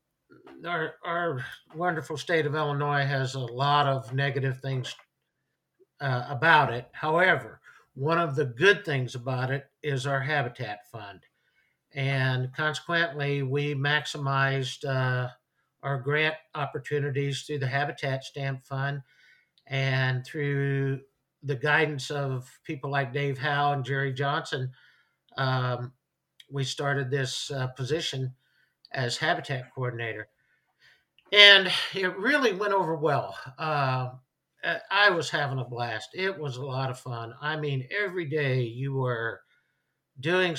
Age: 60-79